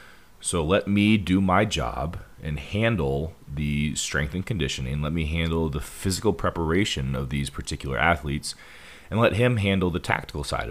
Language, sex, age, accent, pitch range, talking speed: English, male, 30-49, American, 70-95 Hz, 165 wpm